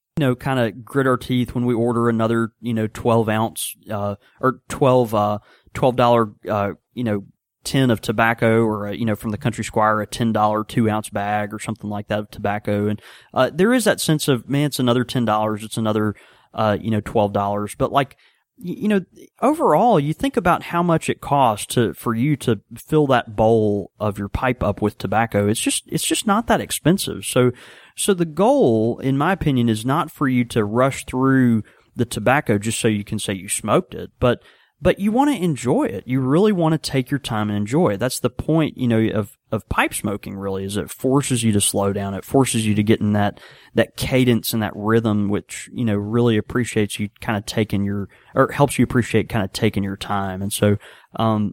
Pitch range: 105-140 Hz